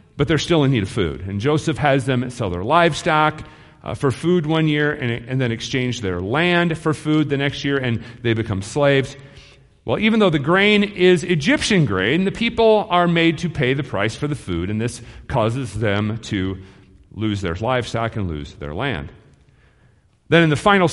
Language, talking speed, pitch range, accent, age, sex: English, 200 wpm, 105-160 Hz, American, 40-59, male